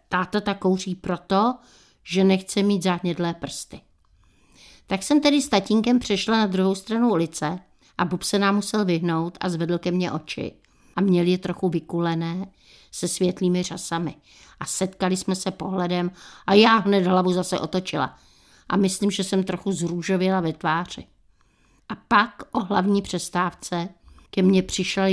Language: Czech